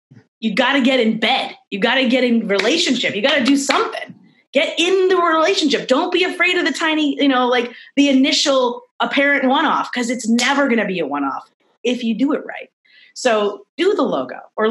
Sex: female